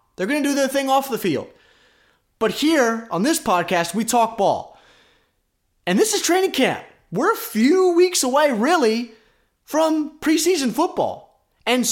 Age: 20-39